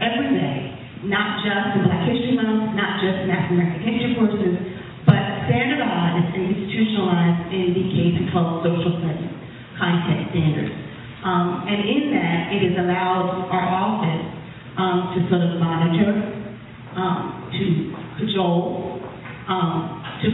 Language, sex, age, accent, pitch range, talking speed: English, female, 40-59, American, 170-205 Hz, 125 wpm